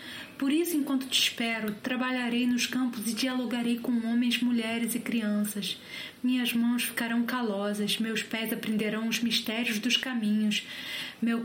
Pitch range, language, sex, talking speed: 220-245 Hz, Portuguese, female, 140 wpm